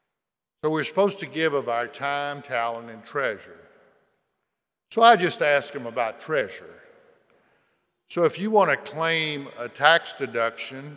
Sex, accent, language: male, American, English